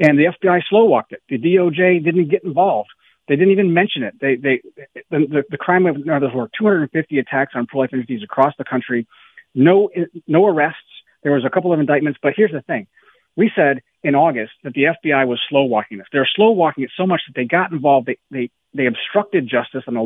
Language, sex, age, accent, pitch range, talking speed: English, male, 40-59, American, 130-175 Hz, 225 wpm